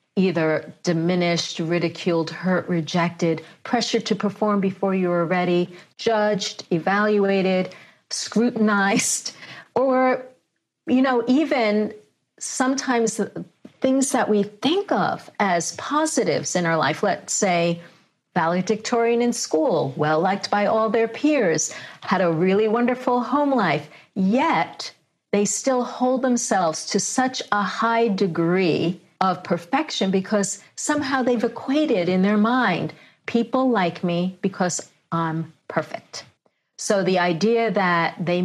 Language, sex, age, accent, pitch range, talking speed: English, female, 50-69, American, 170-225 Hz, 120 wpm